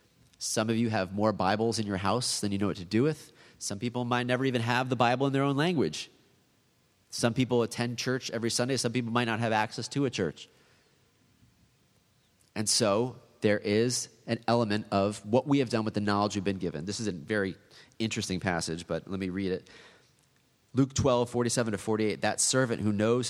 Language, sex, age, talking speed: English, male, 30-49, 205 wpm